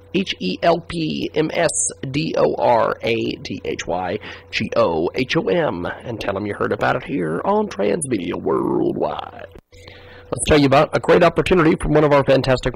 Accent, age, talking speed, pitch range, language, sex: American, 30-49, 195 wpm, 115-155 Hz, English, male